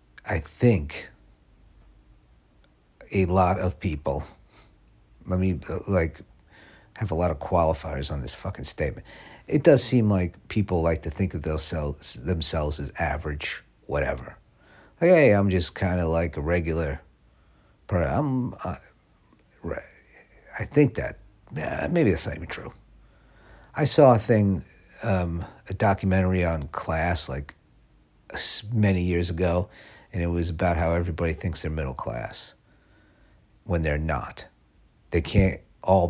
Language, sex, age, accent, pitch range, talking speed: English, male, 50-69, American, 80-105 Hz, 135 wpm